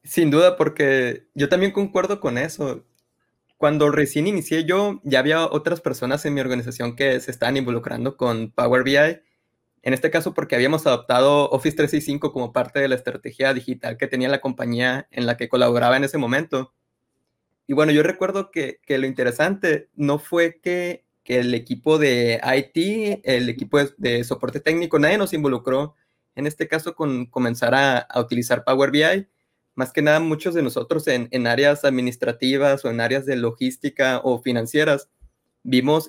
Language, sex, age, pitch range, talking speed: Spanish, male, 20-39, 125-150 Hz, 175 wpm